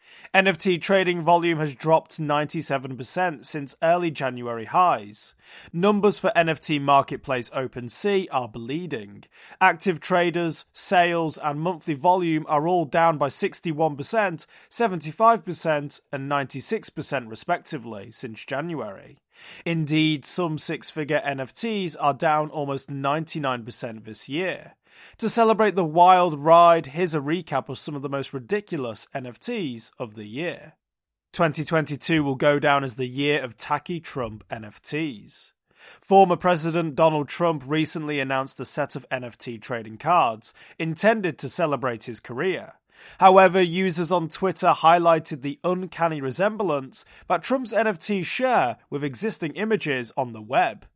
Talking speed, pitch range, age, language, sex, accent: 125 wpm, 135-180 Hz, 30-49, English, male, British